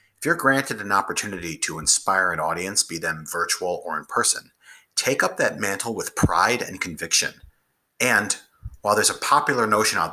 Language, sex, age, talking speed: English, male, 30-49, 170 wpm